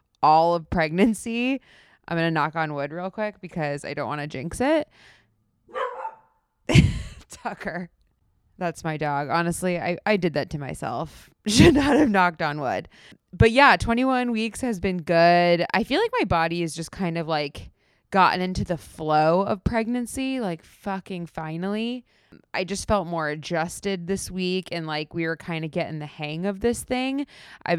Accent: American